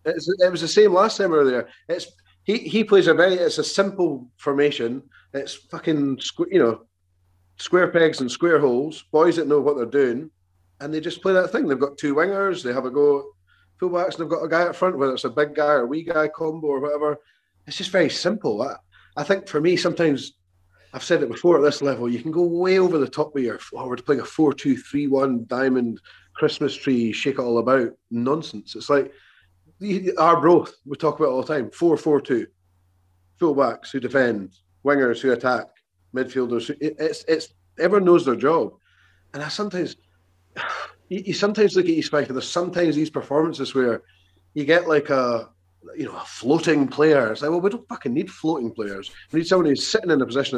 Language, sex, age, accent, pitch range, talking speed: English, male, 30-49, British, 120-170 Hz, 210 wpm